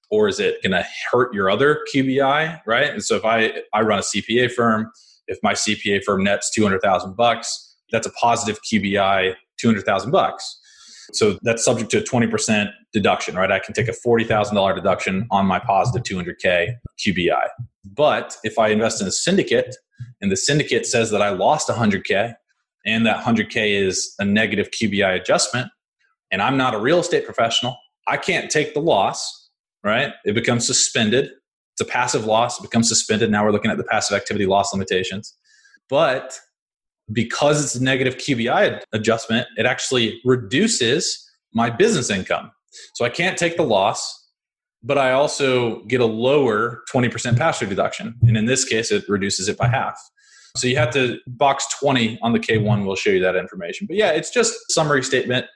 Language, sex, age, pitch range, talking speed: English, male, 20-39, 105-140 Hz, 175 wpm